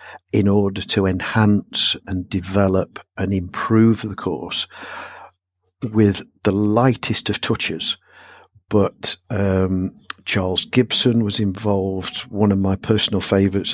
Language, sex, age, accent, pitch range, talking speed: English, male, 50-69, British, 95-110 Hz, 115 wpm